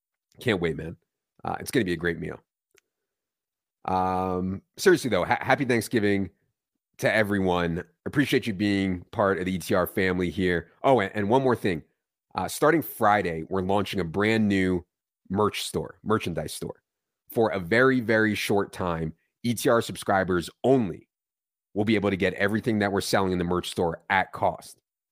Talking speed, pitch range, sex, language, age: 160 wpm, 90-110 Hz, male, English, 30-49